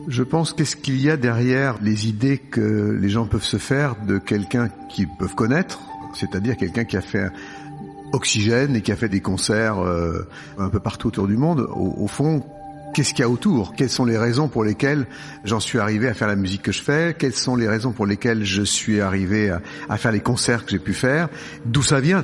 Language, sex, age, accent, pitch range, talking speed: French, male, 50-69, French, 105-130 Hz, 225 wpm